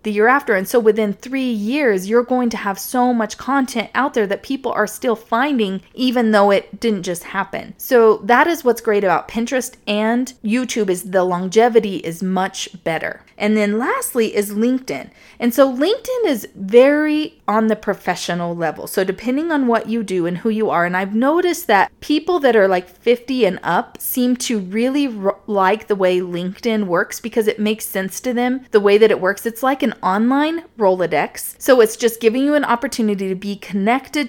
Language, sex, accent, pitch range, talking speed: English, female, American, 200-250 Hz, 195 wpm